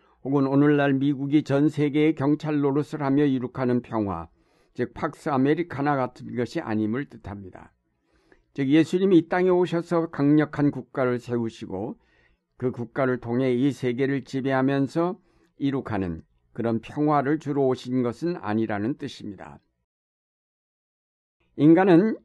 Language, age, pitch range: Korean, 60-79, 125-150 Hz